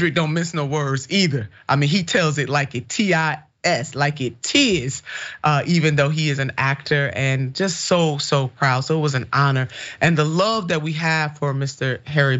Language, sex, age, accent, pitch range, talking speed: English, male, 30-49, American, 130-155 Hz, 215 wpm